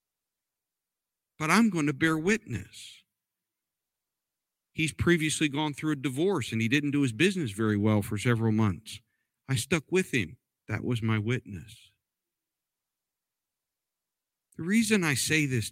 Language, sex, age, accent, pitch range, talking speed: English, male, 50-69, American, 105-135 Hz, 135 wpm